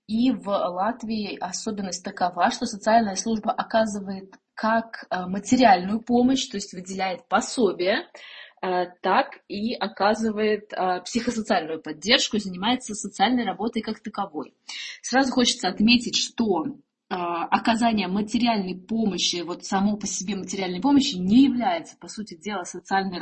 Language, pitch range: Russian, 185-235 Hz